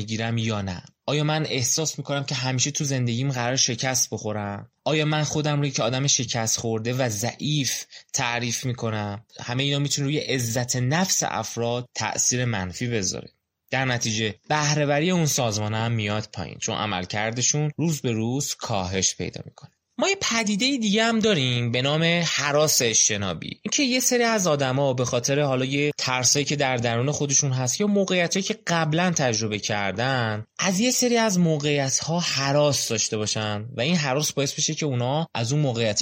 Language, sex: Persian, male